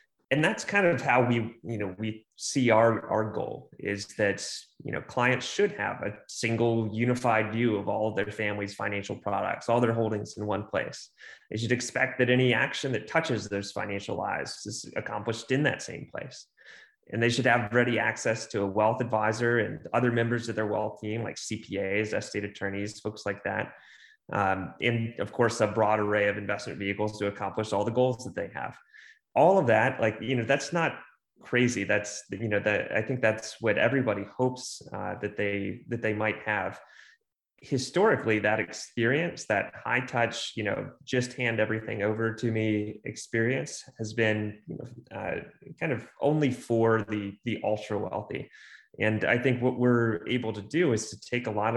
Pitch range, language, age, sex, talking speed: 105-120 Hz, English, 20-39, male, 190 wpm